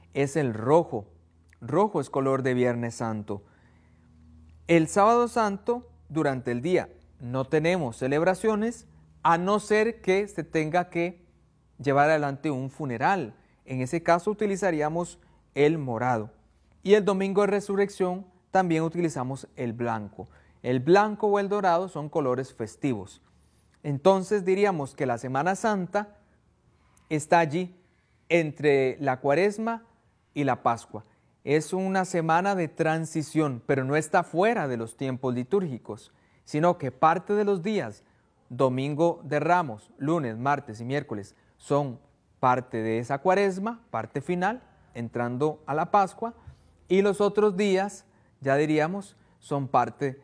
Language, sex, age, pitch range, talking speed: Spanish, male, 30-49, 120-185 Hz, 135 wpm